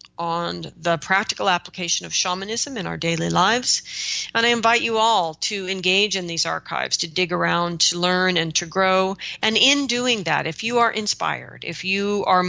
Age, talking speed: 40-59, 185 wpm